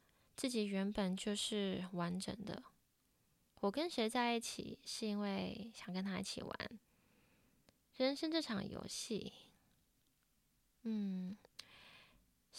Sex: female